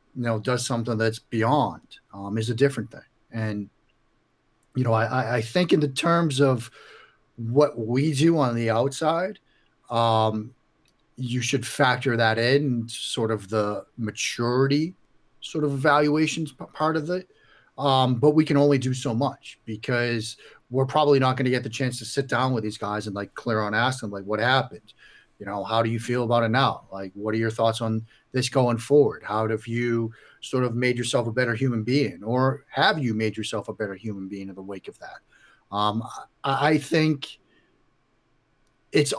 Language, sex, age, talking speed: English, male, 40-59, 185 wpm